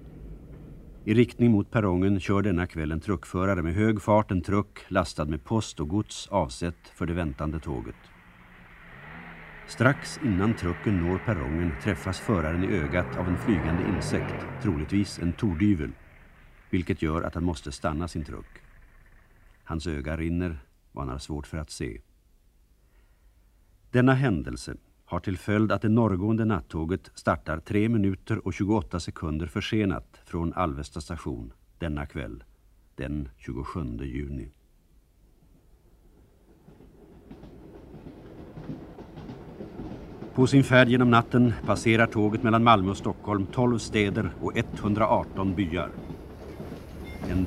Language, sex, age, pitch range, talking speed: Swedish, male, 50-69, 80-105 Hz, 125 wpm